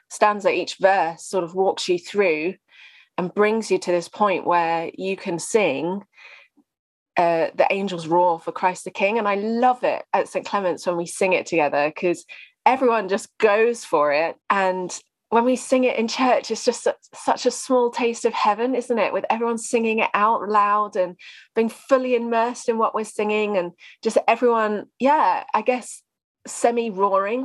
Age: 20-39